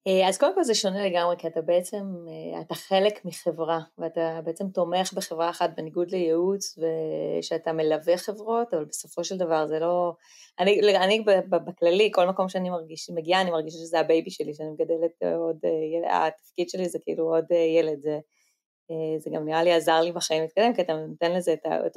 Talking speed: 180 wpm